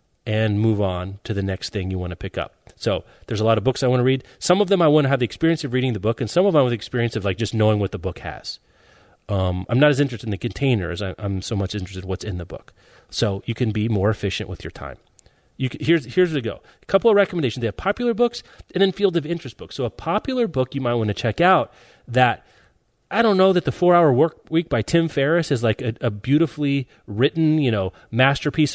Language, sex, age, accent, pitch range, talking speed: English, male, 30-49, American, 105-170 Hz, 265 wpm